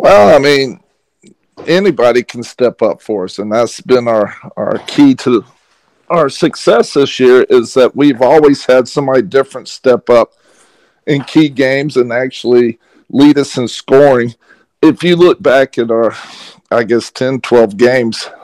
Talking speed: 160 wpm